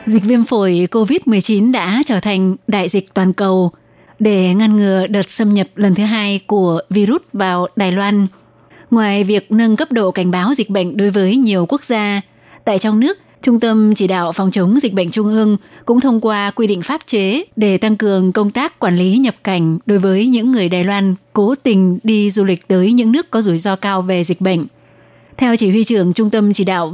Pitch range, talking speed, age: 190-220 Hz, 215 wpm, 20-39